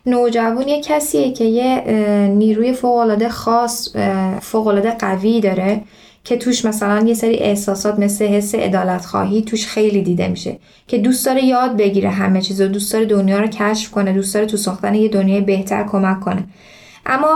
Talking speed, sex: 170 wpm, female